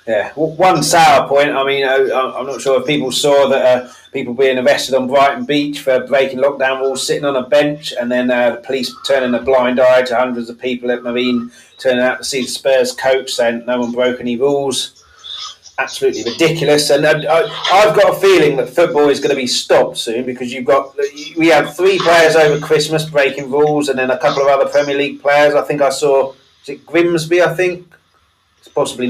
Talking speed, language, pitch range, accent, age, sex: 210 wpm, English, 125-150 Hz, British, 30-49, male